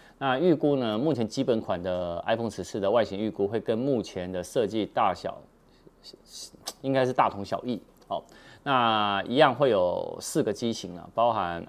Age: 30-49